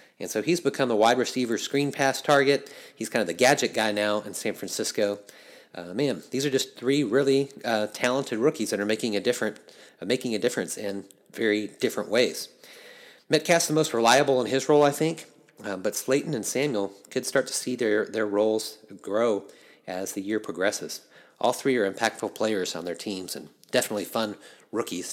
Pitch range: 105-140 Hz